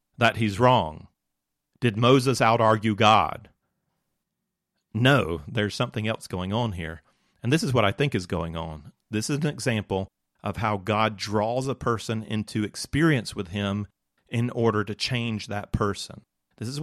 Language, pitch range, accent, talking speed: English, 105-125 Hz, American, 160 wpm